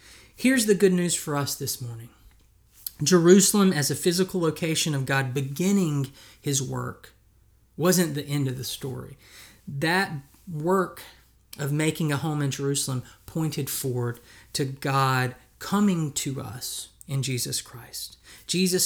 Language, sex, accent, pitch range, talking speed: English, male, American, 130-160 Hz, 135 wpm